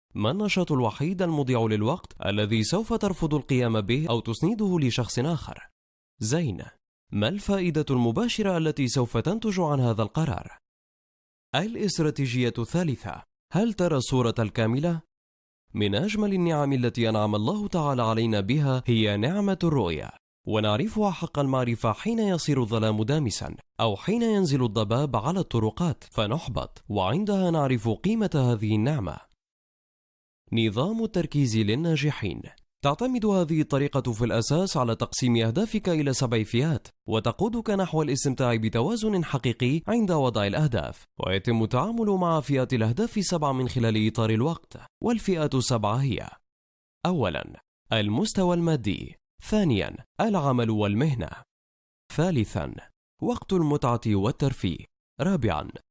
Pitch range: 110-170 Hz